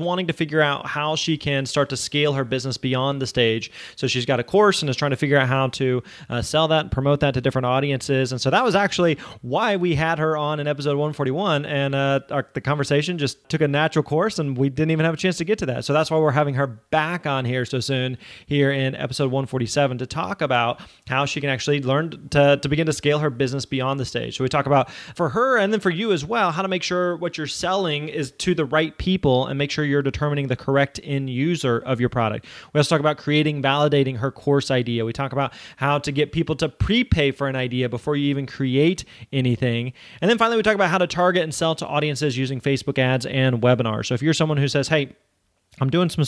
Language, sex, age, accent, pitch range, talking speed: English, male, 20-39, American, 130-155 Hz, 250 wpm